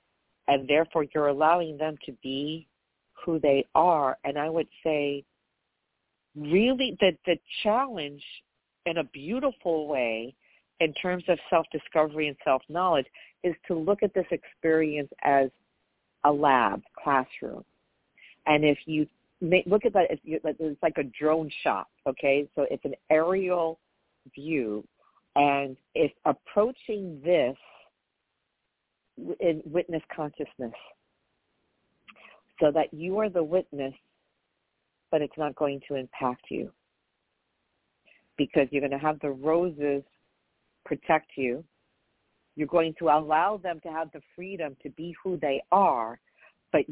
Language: English